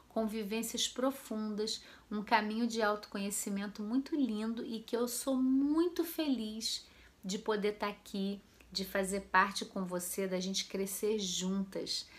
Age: 40-59